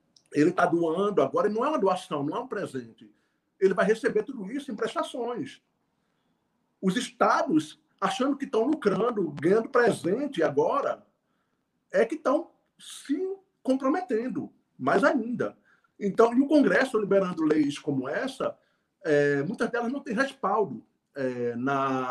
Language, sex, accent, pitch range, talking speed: Portuguese, male, Brazilian, 160-245 Hz, 140 wpm